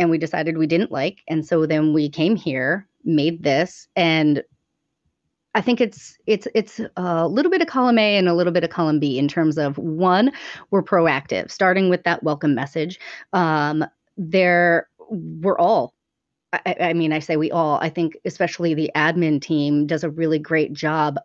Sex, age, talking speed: female, 30-49, 185 wpm